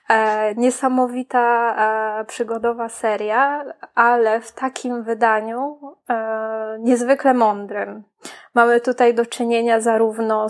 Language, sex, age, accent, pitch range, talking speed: Polish, female, 20-39, native, 215-245 Hz, 80 wpm